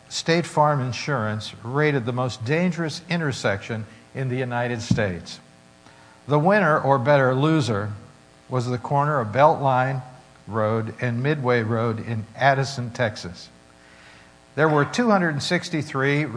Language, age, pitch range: English, 60-79, 110-140 Hz